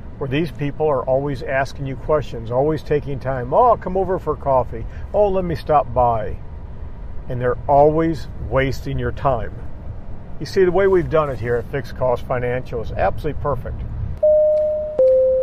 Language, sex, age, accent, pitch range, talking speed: English, male, 50-69, American, 120-155 Hz, 165 wpm